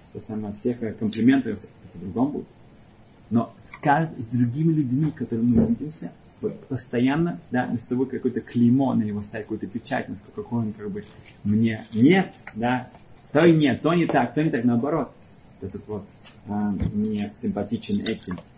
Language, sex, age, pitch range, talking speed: Russian, male, 30-49, 110-140 Hz, 160 wpm